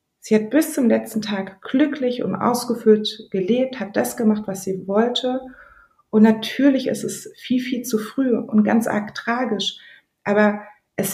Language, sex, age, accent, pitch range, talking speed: German, female, 30-49, German, 185-225 Hz, 160 wpm